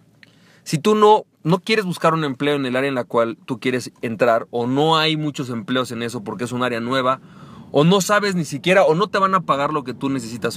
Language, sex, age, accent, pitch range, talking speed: Spanish, male, 40-59, Mexican, 135-185 Hz, 250 wpm